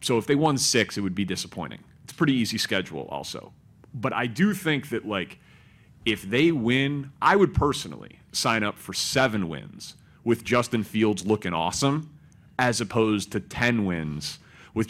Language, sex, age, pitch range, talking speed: English, male, 30-49, 95-120 Hz, 175 wpm